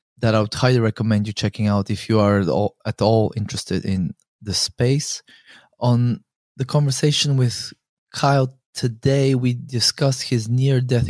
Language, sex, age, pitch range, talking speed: English, male, 20-39, 110-125 Hz, 150 wpm